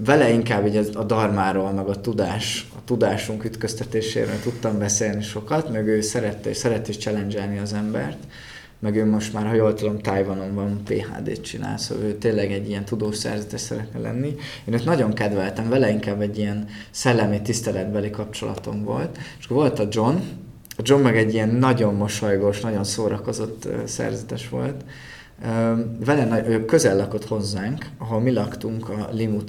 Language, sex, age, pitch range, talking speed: Hungarian, male, 20-39, 105-120 Hz, 155 wpm